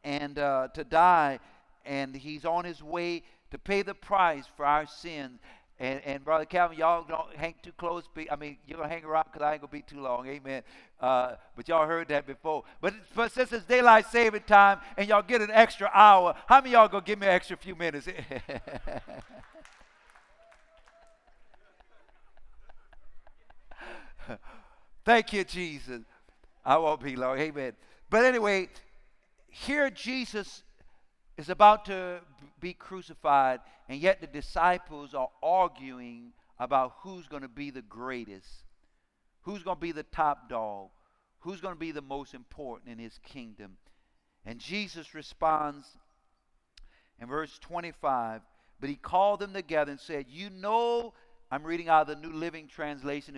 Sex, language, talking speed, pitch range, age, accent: male, English, 155 wpm, 140-200 Hz, 60-79, American